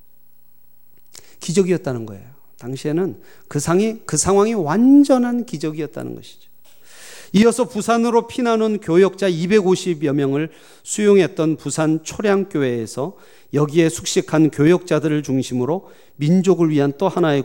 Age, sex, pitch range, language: 40-59, male, 130-185 Hz, Korean